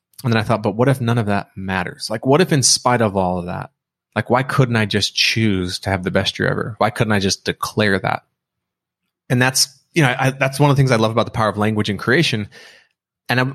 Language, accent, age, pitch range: English, American, 20-39, 105-135 Hz